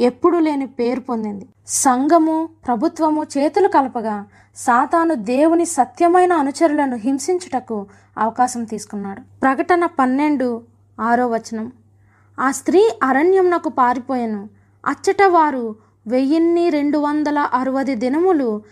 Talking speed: 85 wpm